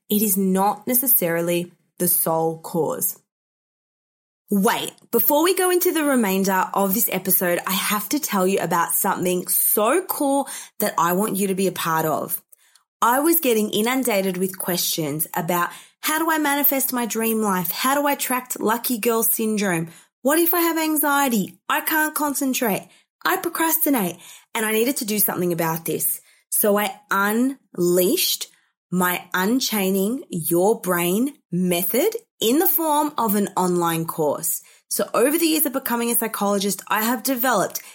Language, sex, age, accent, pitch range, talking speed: English, female, 20-39, Australian, 185-275 Hz, 160 wpm